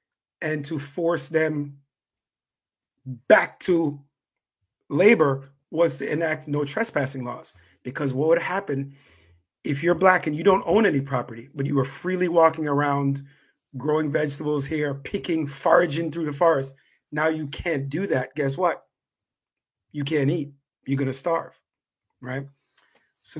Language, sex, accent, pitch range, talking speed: English, male, American, 140-165 Hz, 145 wpm